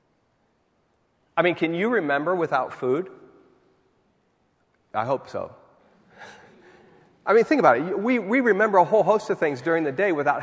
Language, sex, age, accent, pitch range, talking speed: English, male, 40-59, American, 115-170 Hz, 155 wpm